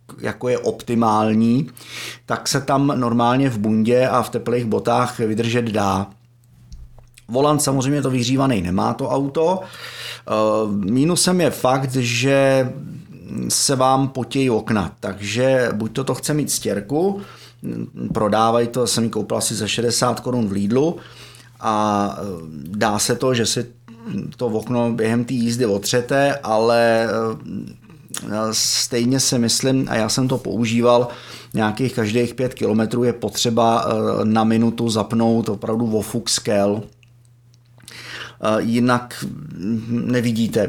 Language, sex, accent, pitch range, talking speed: Czech, male, native, 110-125 Hz, 125 wpm